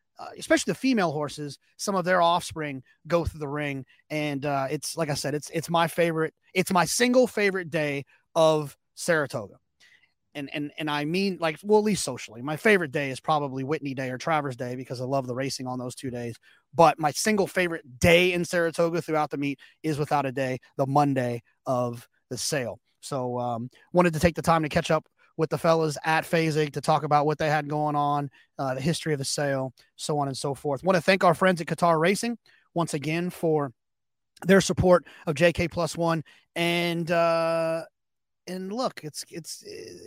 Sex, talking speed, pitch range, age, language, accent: male, 205 wpm, 145-175 Hz, 30-49, English, American